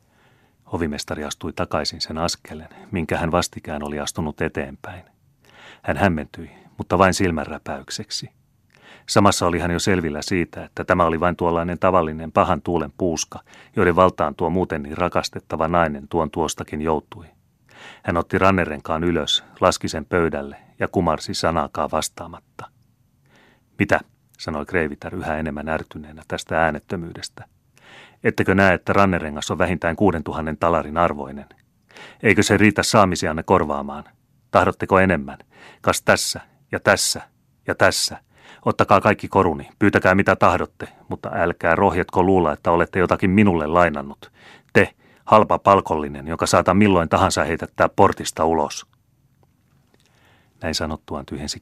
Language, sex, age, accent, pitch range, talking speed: Finnish, male, 30-49, native, 80-95 Hz, 130 wpm